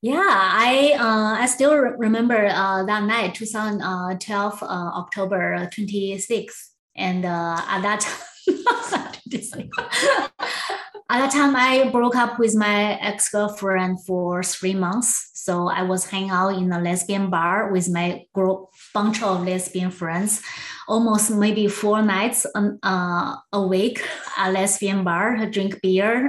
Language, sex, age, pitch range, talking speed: English, female, 20-39, 190-230 Hz, 145 wpm